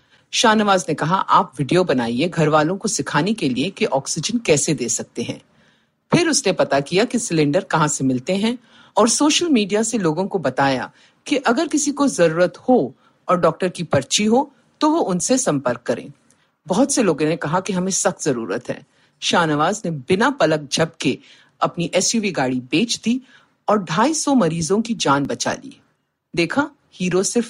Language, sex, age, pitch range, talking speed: Hindi, female, 50-69, 155-245 Hz, 130 wpm